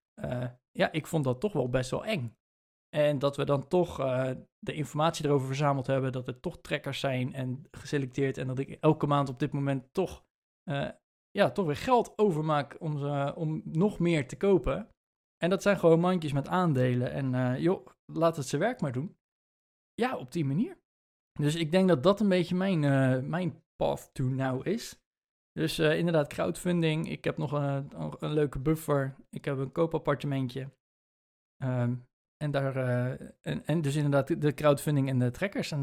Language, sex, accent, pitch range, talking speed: Dutch, male, Dutch, 135-170 Hz, 185 wpm